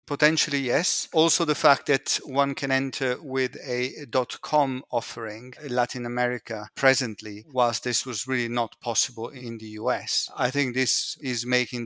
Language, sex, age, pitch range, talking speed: English, male, 40-59, 115-135 Hz, 155 wpm